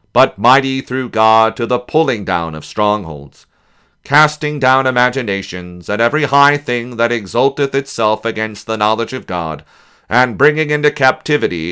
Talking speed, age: 150 wpm, 40-59